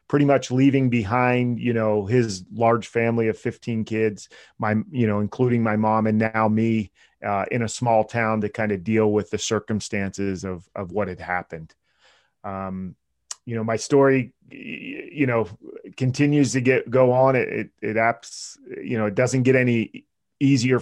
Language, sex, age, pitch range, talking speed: English, male, 30-49, 100-115 Hz, 175 wpm